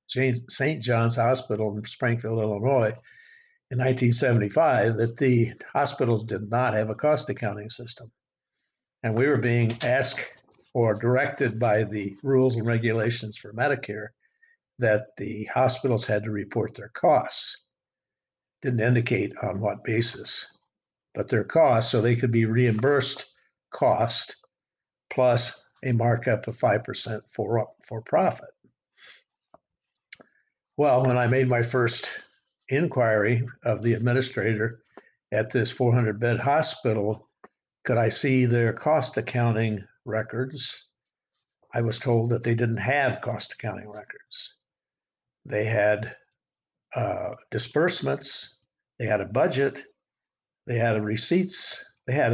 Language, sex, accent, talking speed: English, male, American, 125 wpm